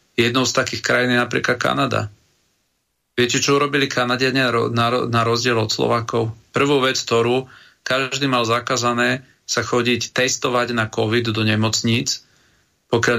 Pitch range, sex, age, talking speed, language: 115-130 Hz, male, 40-59, 130 wpm, Slovak